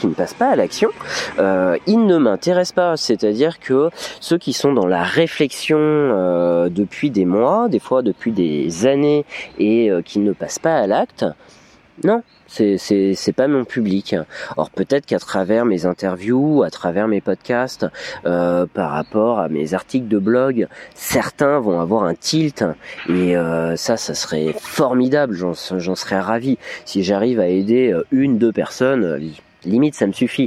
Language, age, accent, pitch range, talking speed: French, 30-49, French, 95-130 Hz, 175 wpm